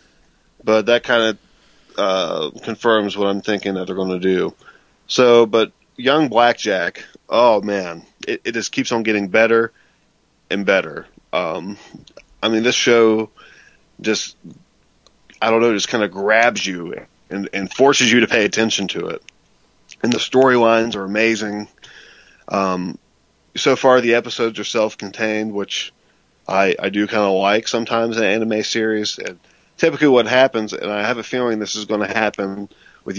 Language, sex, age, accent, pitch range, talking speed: English, male, 20-39, American, 100-115 Hz, 165 wpm